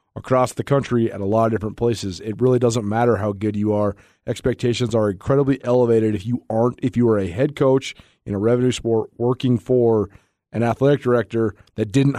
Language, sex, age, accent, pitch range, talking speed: English, male, 30-49, American, 115-140 Hz, 205 wpm